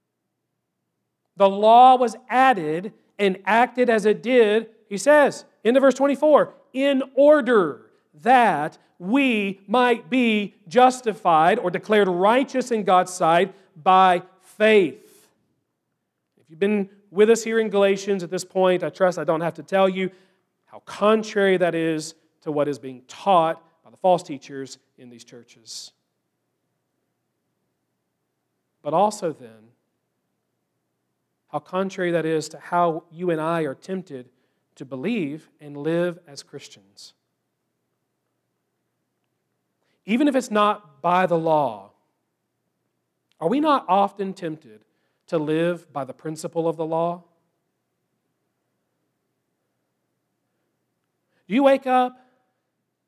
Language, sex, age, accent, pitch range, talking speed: English, male, 40-59, American, 160-215 Hz, 125 wpm